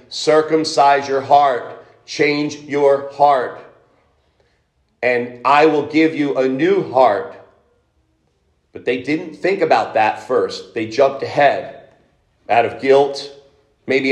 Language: English